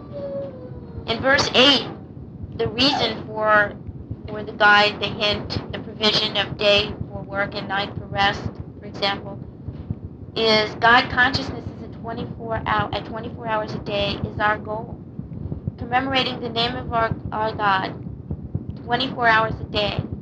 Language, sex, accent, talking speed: English, female, American, 150 wpm